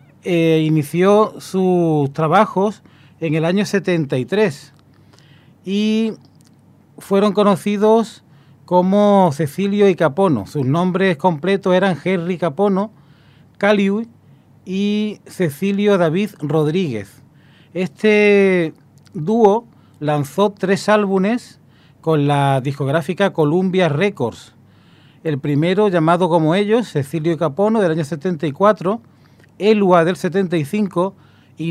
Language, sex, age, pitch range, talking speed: Spanish, male, 40-59, 150-195 Hz, 95 wpm